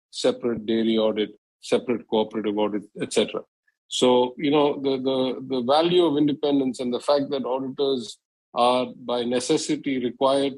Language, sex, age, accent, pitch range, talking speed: English, male, 50-69, Indian, 115-140 Hz, 140 wpm